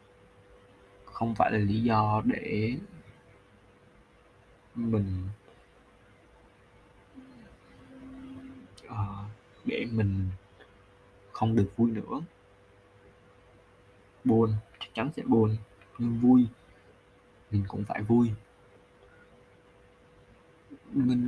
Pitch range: 100-115 Hz